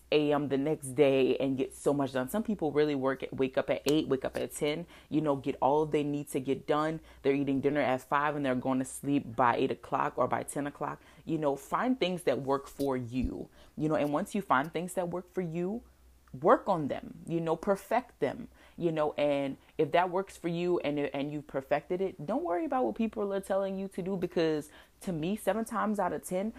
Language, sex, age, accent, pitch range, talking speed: English, female, 20-39, American, 140-175 Hz, 240 wpm